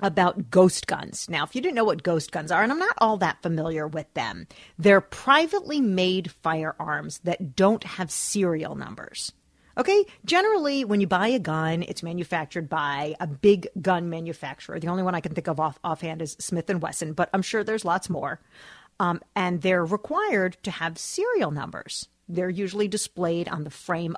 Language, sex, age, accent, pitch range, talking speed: English, female, 40-59, American, 170-210 Hz, 185 wpm